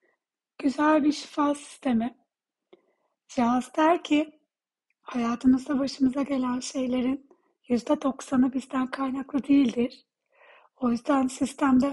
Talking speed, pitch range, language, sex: 95 wpm, 250-285 Hz, Turkish, female